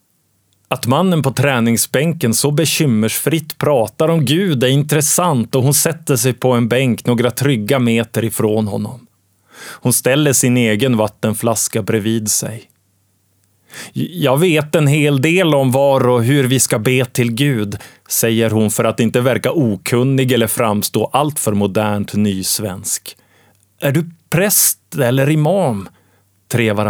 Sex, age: male, 30-49